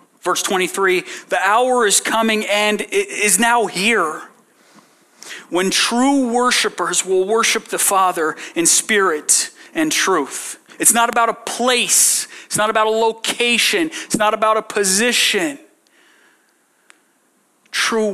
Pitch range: 185-255 Hz